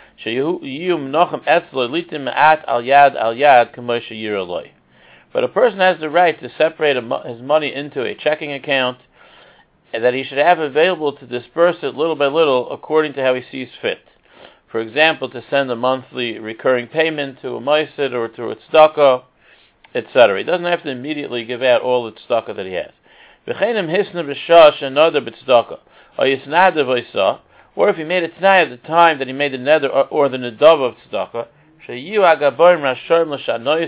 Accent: American